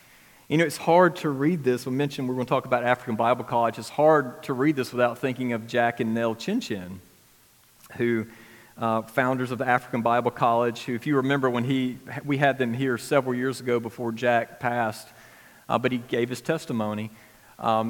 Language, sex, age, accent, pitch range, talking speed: English, male, 40-59, American, 115-140 Hz, 210 wpm